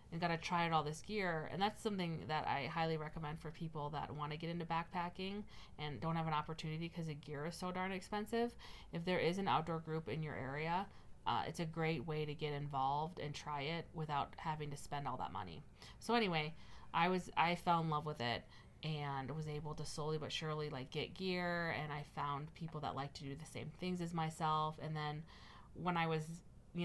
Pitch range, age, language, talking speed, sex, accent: 145-165 Hz, 30-49, English, 225 wpm, female, American